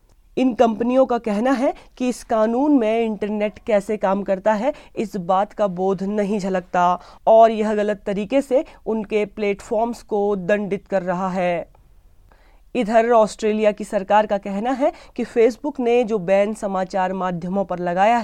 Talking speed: 160 wpm